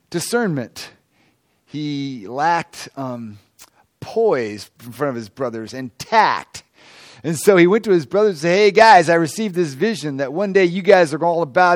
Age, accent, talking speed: 40-59, American, 185 wpm